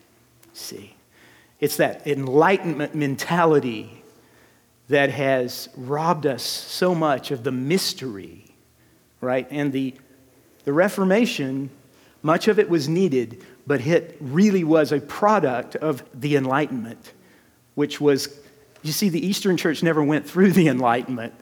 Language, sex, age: English, male, 40-59